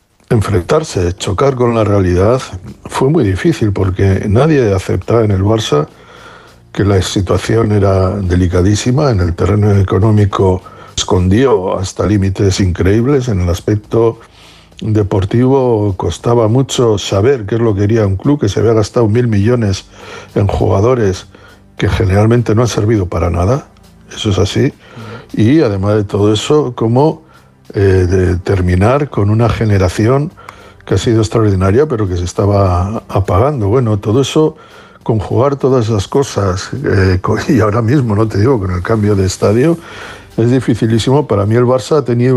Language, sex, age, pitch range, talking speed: Spanish, male, 60-79, 95-125 Hz, 155 wpm